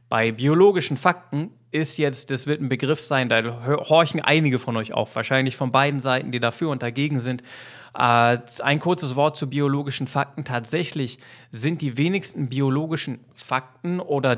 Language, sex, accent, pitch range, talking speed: German, male, German, 120-145 Hz, 165 wpm